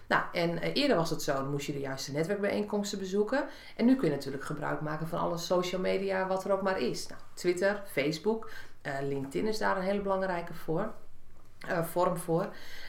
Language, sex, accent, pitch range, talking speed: Dutch, female, Dutch, 155-220 Hz, 175 wpm